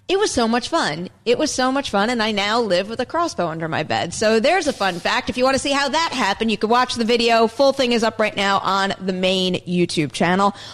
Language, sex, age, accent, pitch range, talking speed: English, female, 30-49, American, 195-265 Hz, 275 wpm